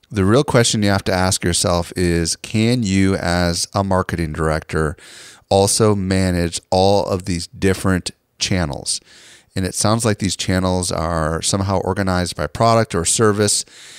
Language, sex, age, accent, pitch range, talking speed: English, male, 30-49, American, 90-105 Hz, 150 wpm